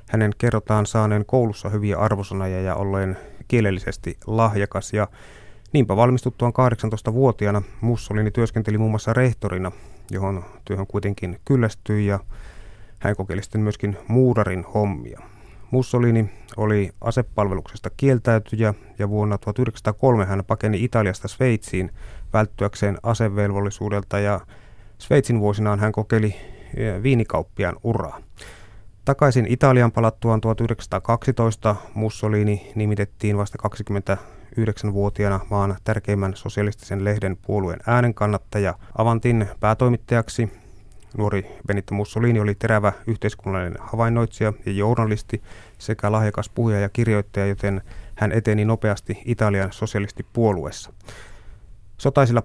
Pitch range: 100-115 Hz